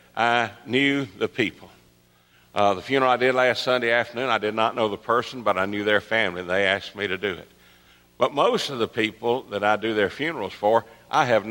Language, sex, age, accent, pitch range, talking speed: English, male, 60-79, American, 100-130 Hz, 225 wpm